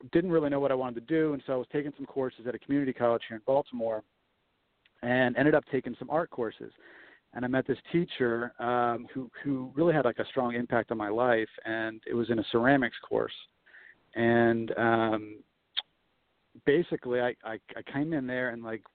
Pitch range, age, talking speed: 110-130 Hz, 40-59, 205 wpm